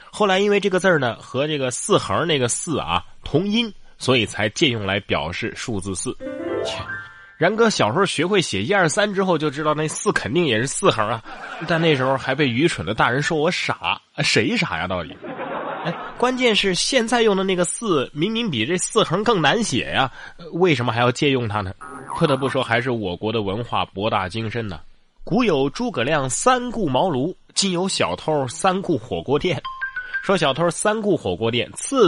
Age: 20-39